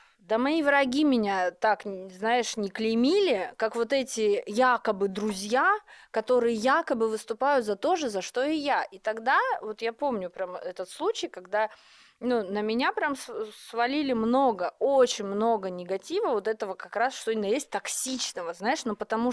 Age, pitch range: 20-39, 215-300 Hz